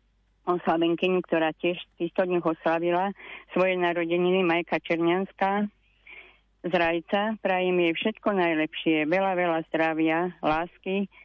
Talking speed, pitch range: 105 wpm, 160-185 Hz